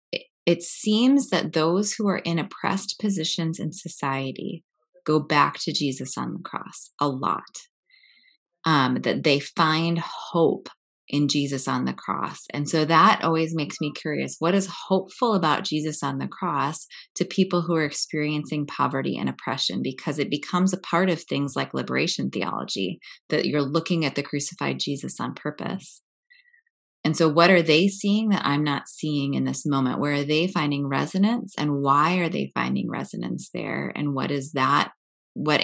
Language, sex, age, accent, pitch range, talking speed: English, female, 20-39, American, 140-180 Hz, 170 wpm